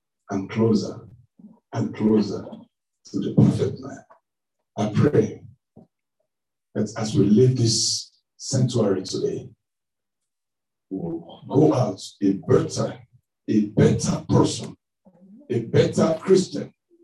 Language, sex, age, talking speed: English, male, 60-79, 100 wpm